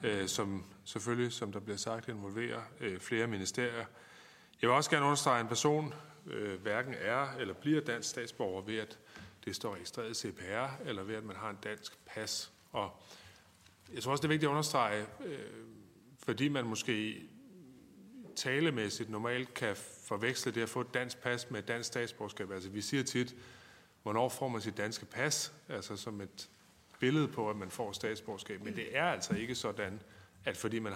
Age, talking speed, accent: 30-49, 180 wpm, native